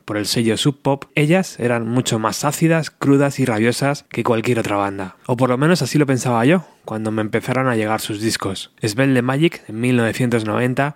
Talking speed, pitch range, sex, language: 195 wpm, 110-135 Hz, male, Spanish